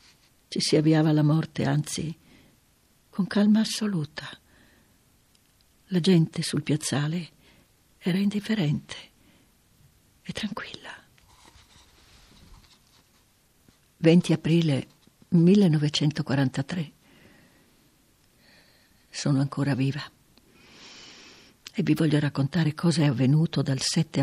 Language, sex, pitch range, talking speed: Italian, female, 150-190 Hz, 80 wpm